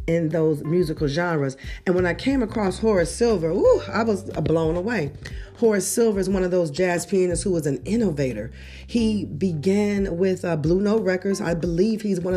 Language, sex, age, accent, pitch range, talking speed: English, female, 40-59, American, 145-190 Hz, 190 wpm